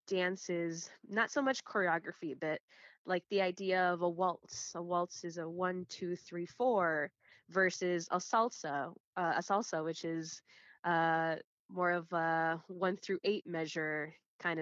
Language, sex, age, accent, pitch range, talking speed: English, female, 20-39, American, 165-200 Hz, 155 wpm